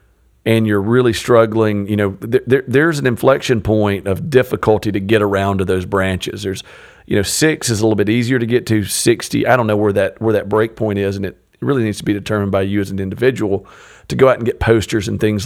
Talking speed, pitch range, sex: 245 wpm, 100-115 Hz, male